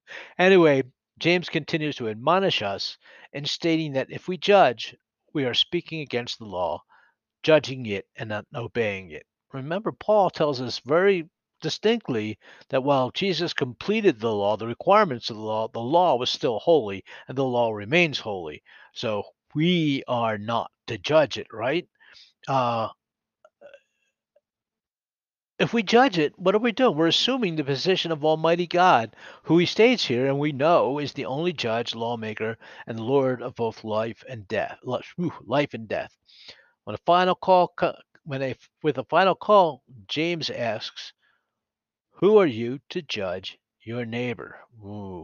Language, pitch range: English, 115-170 Hz